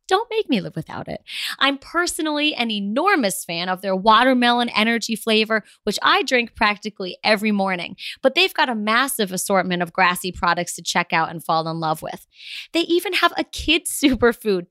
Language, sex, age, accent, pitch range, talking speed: English, female, 20-39, American, 190-275 Hz, 185 wpm